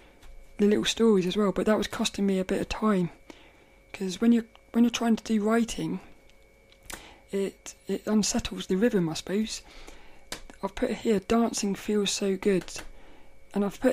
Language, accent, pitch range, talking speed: English, British, 200-245 Hz, 170 wpm